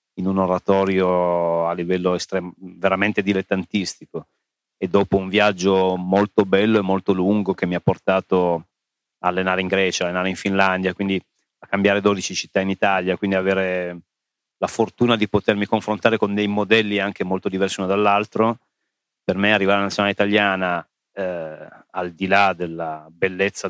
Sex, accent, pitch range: male, native, 90-100 Hz